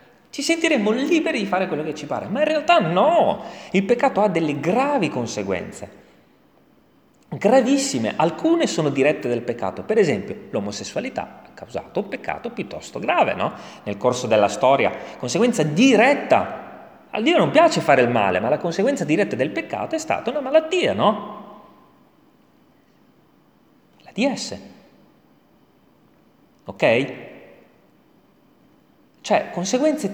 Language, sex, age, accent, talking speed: Italian, male, 30-49, native, 125 wpm